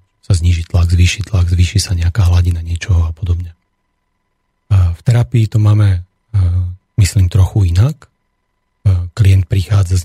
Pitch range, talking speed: 90-105 Hz, 130 wpm